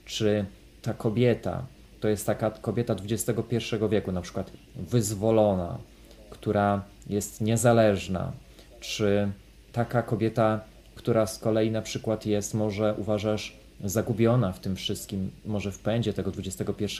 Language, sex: Polish, male